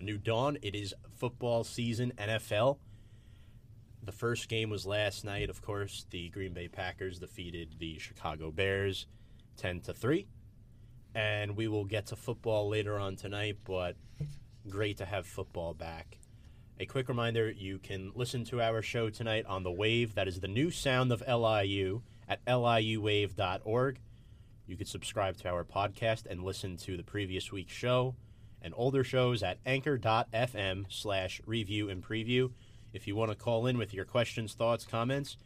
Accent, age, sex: American, 30-49, male